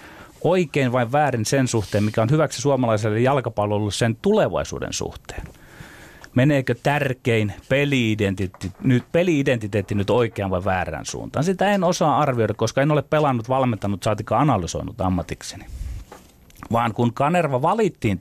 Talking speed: 130 wpm